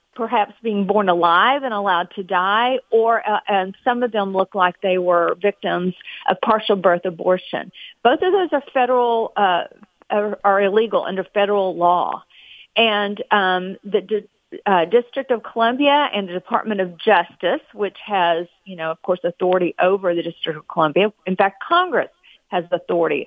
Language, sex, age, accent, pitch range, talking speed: English, female, 40-59, American, 195-255 Hz, 170 wpm